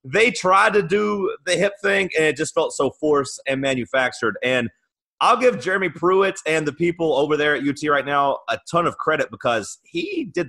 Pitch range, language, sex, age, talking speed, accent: 130-175 Hz, English, male, 30-49, 205 wpm, American